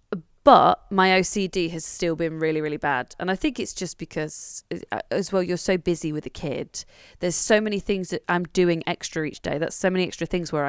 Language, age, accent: English, 20-39, British